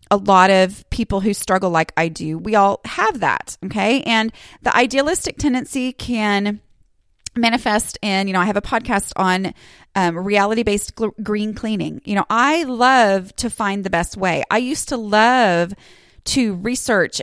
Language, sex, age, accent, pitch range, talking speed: English, female, 30-49, American, 185-230 Hz, 165 wpm